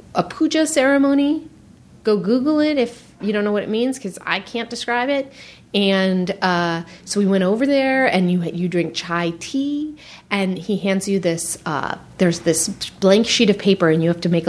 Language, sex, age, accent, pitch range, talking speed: English, female, 30-49, American, 170-205 Hz, 200 wpm